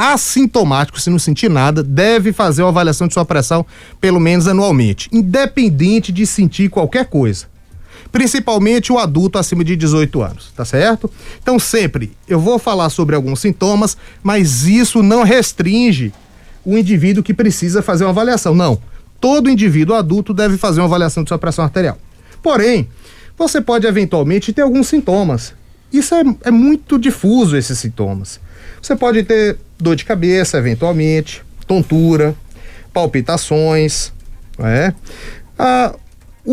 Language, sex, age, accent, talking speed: Portuguese, male, 30-49, Brazilian, 140 wpm